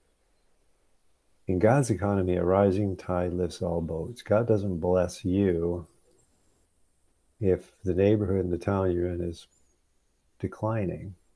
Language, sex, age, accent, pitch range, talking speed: English, male, 50-69, American, 85-105 Hz, 120 wpm